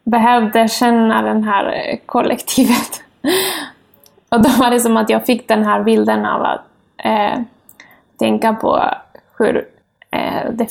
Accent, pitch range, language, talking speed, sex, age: native, 215-240 Hz, Swedish, 135 wpm, female, 20-39